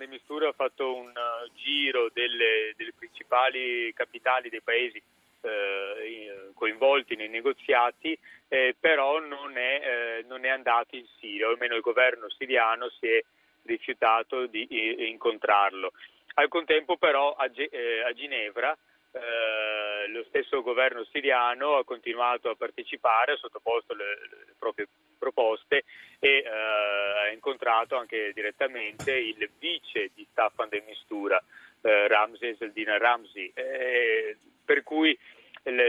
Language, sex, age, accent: Italian, male, 30-49, native